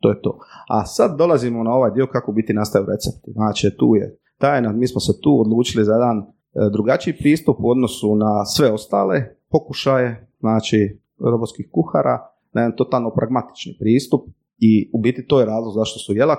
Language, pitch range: Croatian, 105-130 Hz